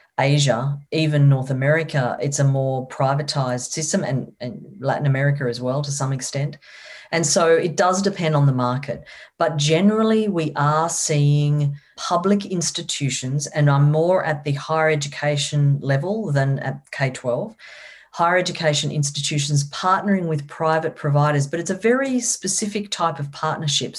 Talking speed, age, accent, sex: 150 wpm, 40-59, Australian, female